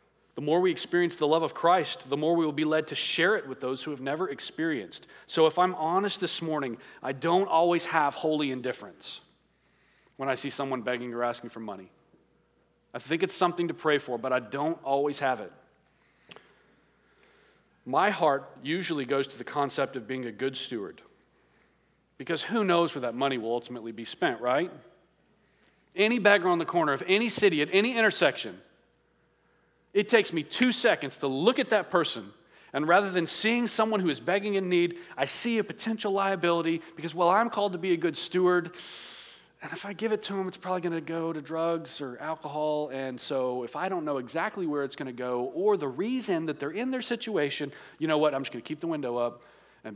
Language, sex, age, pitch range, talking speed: English, male, 40-59, 130-185 Hz, 210 wpm